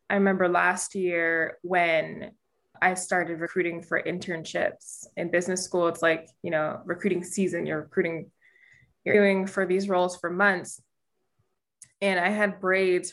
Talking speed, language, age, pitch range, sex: 145 wpm, English, 20-39, 175-200 Hz, female